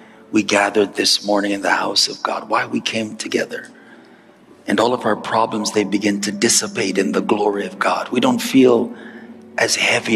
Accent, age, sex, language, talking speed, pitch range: American, 40-59, male, English, 190 wpm, 105-135 Hz